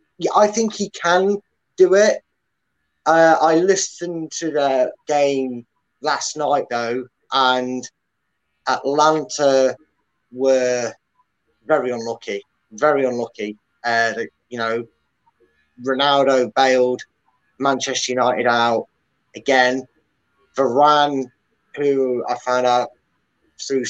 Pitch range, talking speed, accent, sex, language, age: 120-150 Hz, 95 wpm, British, male, English, 20-39